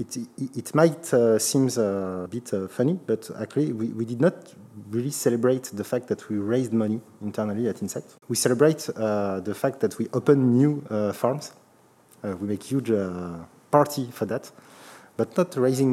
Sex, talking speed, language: male, 185 wpm, French